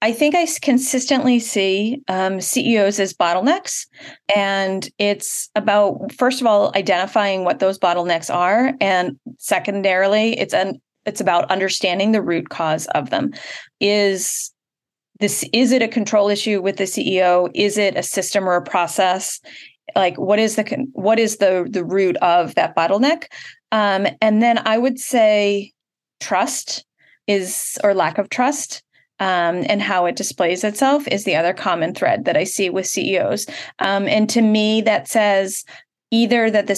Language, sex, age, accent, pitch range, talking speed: English, female, 30-49, American, 185-225 Hz, 160 wpm